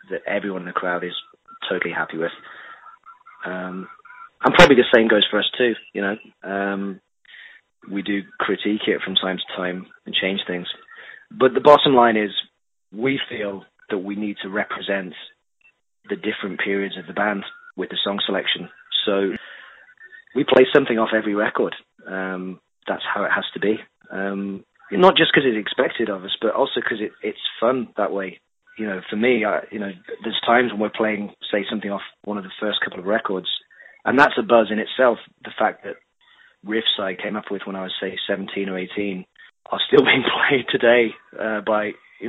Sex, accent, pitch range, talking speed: male, British, 95-115 Hz, 190 wpm